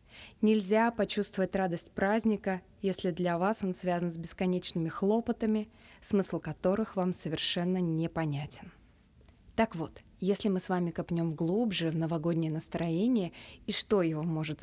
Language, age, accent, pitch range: Russian, 20-39, native, 165-205 Hz